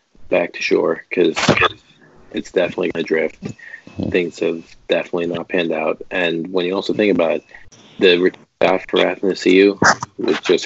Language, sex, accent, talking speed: English, male, American, 160 wpm